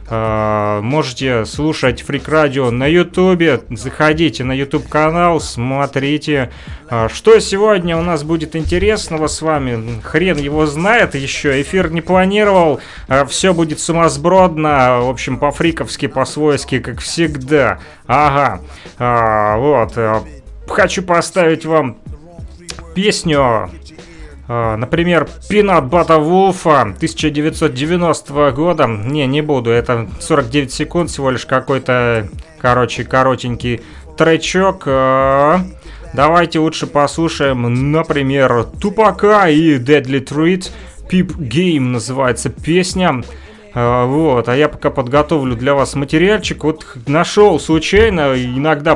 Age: 30-49